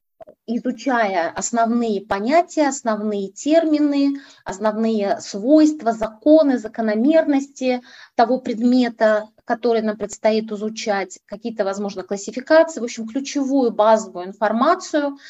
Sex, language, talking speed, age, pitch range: female, Russian, 90 wpm, 20-39, 205-265 Hz